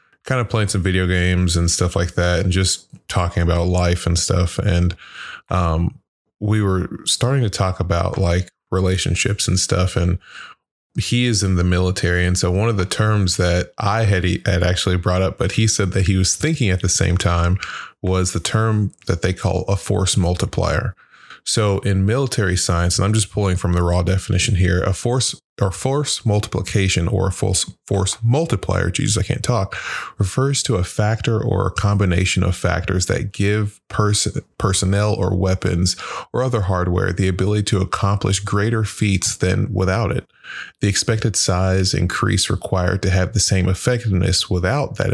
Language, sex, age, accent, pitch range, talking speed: English, male, 20-39, American, 90-110 Hz, 175 wpm